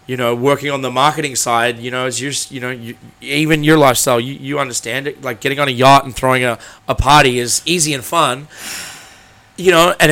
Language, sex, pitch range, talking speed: English, male, 120-145 Hz, 225 wpm